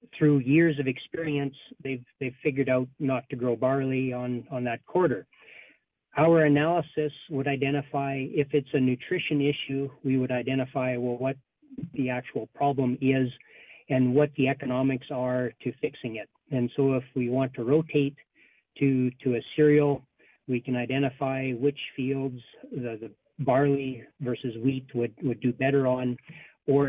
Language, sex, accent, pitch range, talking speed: English, male, American, 125-145 Hz, 155 wpm